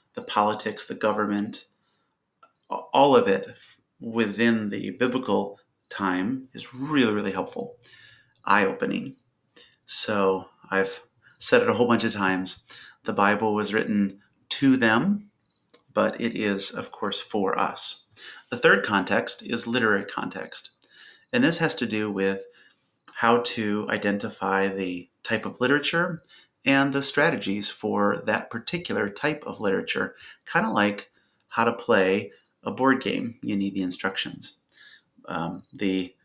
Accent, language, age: American, English, 30-49